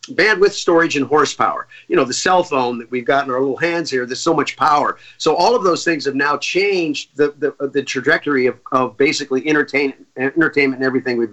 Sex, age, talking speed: male, 50-69, 215 wpm